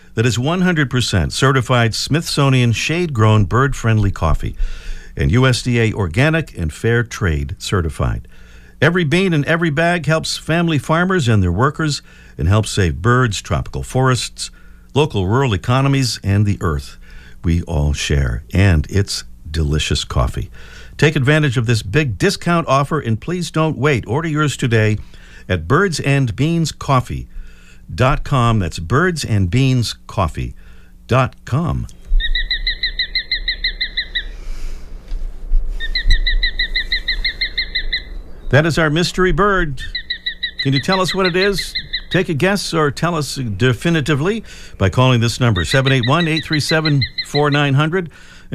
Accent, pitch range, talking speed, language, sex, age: American, 95-160 Hz, 110 wpm, English, male, 50-69